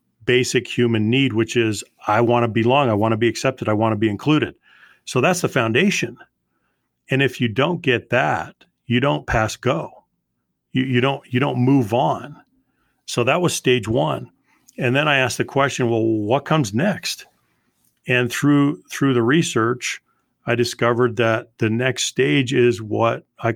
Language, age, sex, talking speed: English, 40-59, male, 175 wpm